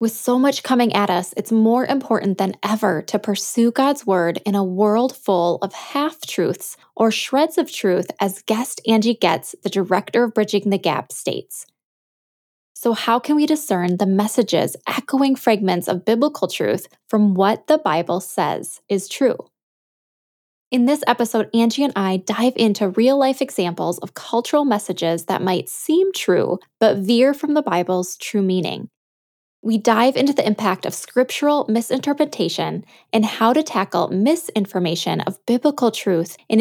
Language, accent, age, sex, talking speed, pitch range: English, American, 10-29, female, 155 wpm, 195-255 Hz